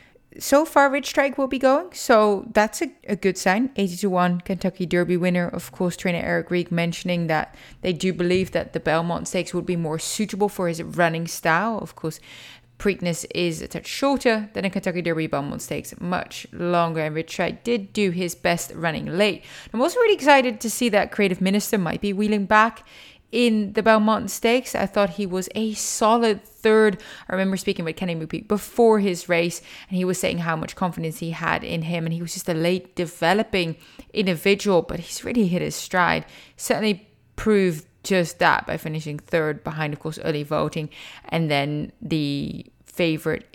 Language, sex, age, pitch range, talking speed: English, female, 30-49, 170-220 Hz, 190 wpm